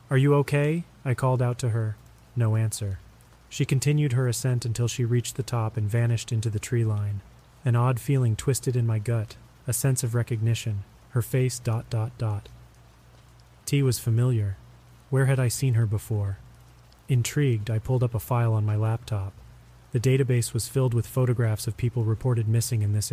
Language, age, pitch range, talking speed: English, 30-49, 110-125 Hz, 185 wpm